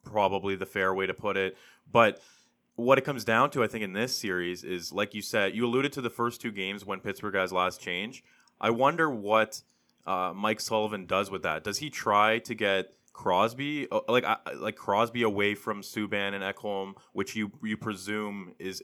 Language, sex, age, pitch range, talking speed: English, male, 20-39, 95-110 Hz, 200 wpm